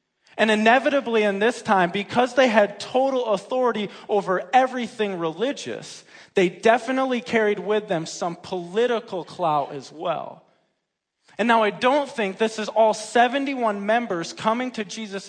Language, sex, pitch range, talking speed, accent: English, male, 175-235 Hz, 140 wpm, American